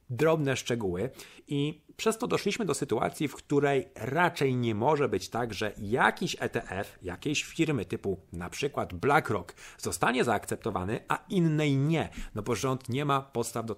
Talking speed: 155 wpm